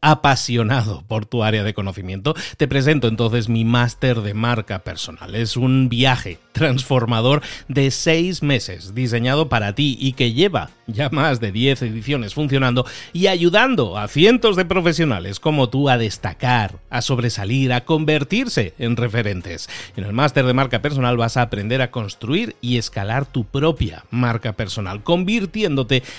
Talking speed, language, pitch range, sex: 155 wpm, Spanish, 115-145 Hz, male